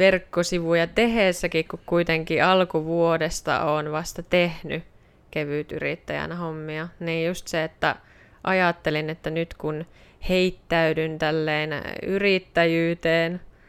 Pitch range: 155-180 Hz